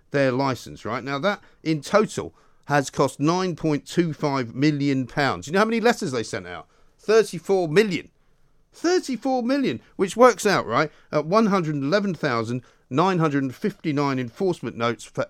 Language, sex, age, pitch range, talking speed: English, male, 50-69, 125-175 Hz, 130 wpm